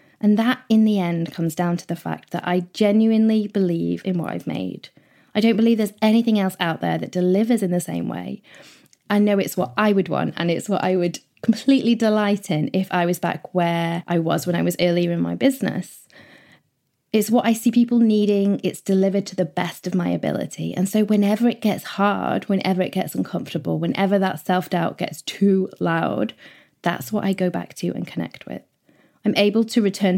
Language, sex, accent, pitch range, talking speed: English, female, British, 180-220 Hz, 205 wpm